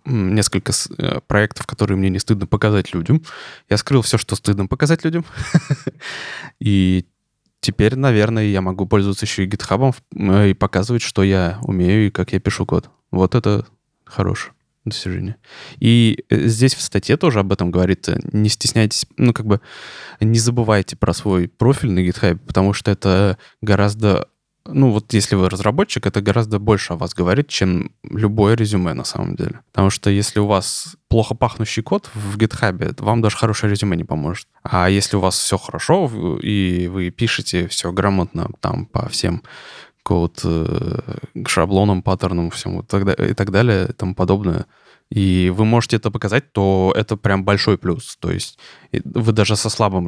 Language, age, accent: Russian, 20-39, native